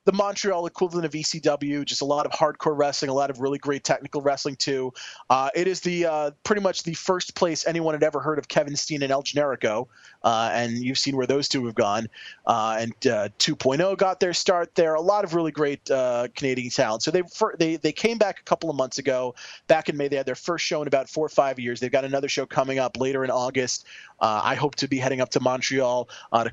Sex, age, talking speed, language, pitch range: male, 30-49, 250 wpm, English, 130-170 Hz